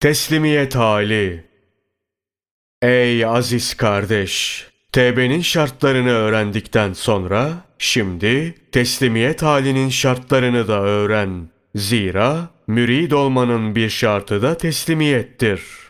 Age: 30-49